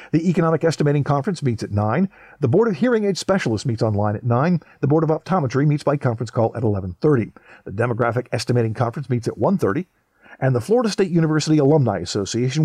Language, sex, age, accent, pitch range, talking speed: English, male, 50-69, American, 120-165 Hz, 195 wpm